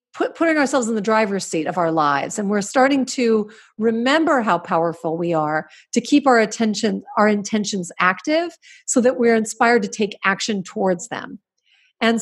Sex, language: female, English